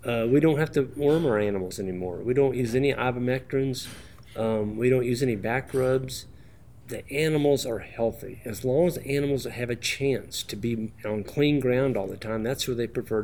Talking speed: 205 wpm